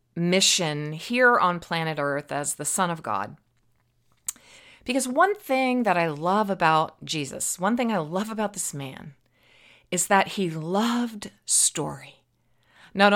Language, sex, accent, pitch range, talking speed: English, female, American, 145-210 Hz, 140 wpm